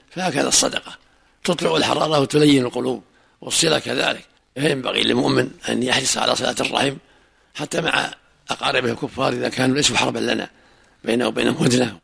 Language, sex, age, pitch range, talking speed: Arabic, male, 60-79, 125-150 Hz, 135 wpm